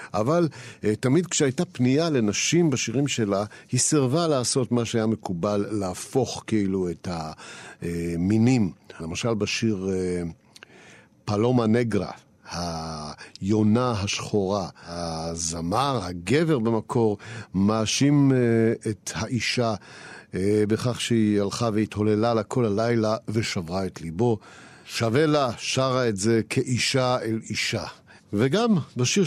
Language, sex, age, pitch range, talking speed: Hebrew, male, 50-69, 95-120 Hz, 100 wpm